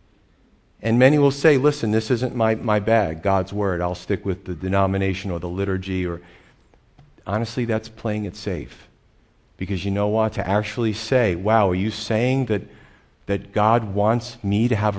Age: 40-59